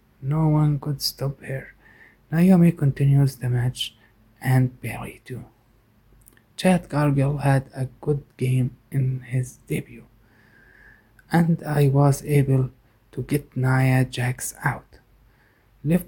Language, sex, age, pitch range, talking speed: English, male, 20-39, 125-145 Hz, 115 wpm